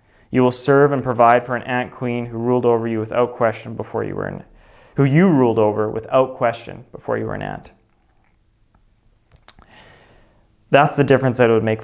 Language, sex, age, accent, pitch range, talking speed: English, male, 30-49, American, 110-140 Hz, 190 wpm